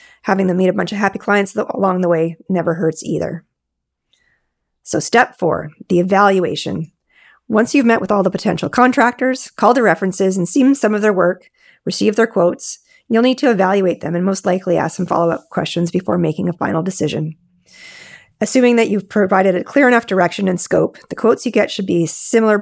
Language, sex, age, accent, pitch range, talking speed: English, female, 40-59, American, 175-215 Hz, 195 wpm